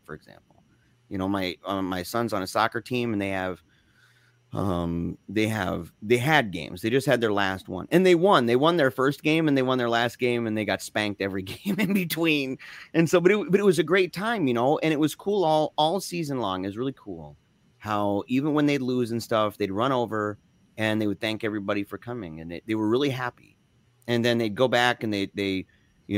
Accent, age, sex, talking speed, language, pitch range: American, 30-49, male, 240 wpm, English, 105-140 Hz